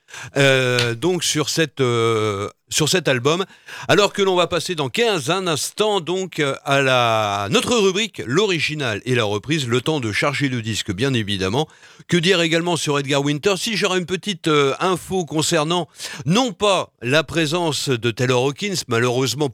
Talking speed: 170 wpm